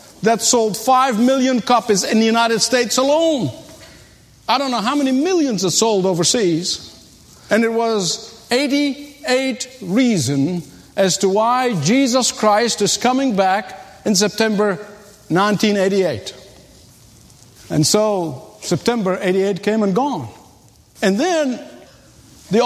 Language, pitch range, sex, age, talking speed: English, 190-255 Hz, male, 50-69, 120 wpm